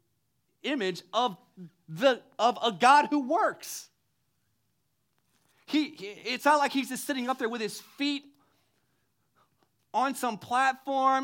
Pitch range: 155-235 Hz